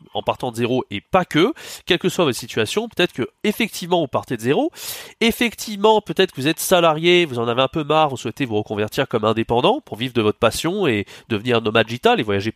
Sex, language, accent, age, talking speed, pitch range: male, French, French, 30-49, 230 wpm, 115-180 Hz